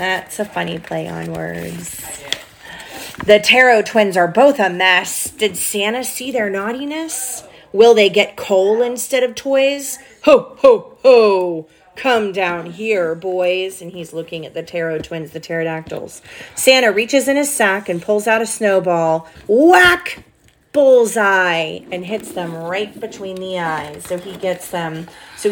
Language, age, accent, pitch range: English, 30-49, American, 175-230 Hz